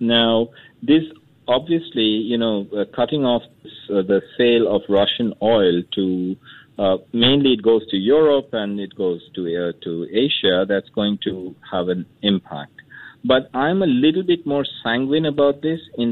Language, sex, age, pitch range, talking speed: English, male, 50-69, 105-150 Hz, 165 wpm